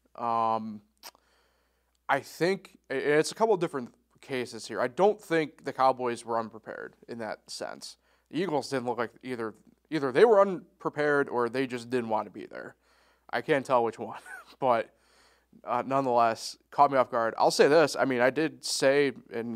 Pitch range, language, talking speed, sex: 115-145 Hz, English, 180 wpm, male